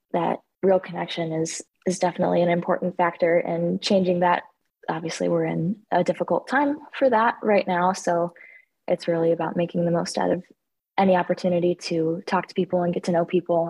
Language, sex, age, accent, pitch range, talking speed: English, female, 20-39, American, 165-190 Hz, 185 wpm